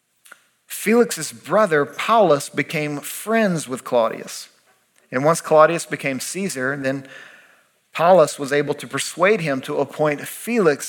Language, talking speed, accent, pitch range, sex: English, 120 wpm, American, 135-170 Hz, male